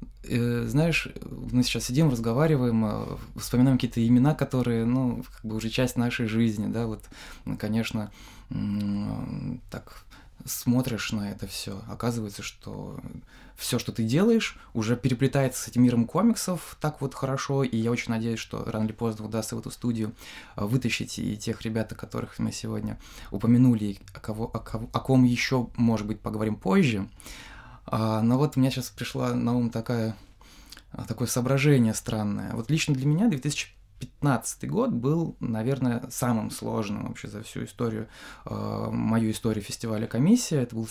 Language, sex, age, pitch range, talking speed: Russian, male, 20-39, 110-130 Hz, 150 wpm